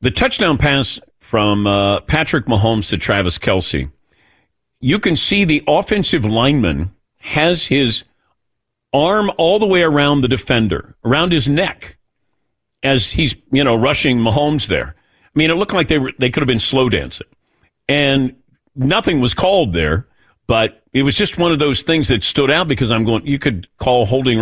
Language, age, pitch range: English, 50-69, 100-145 Hz